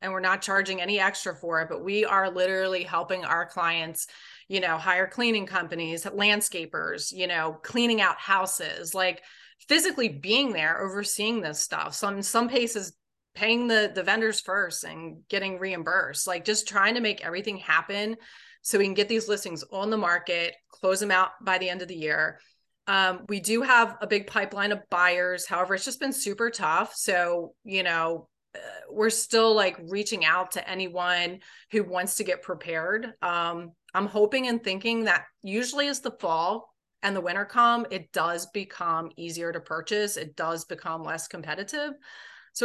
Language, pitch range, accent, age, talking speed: English, 175-215 Hz, American, 30-49, 175 wpm